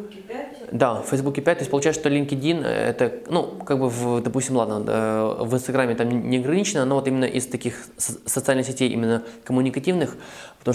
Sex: male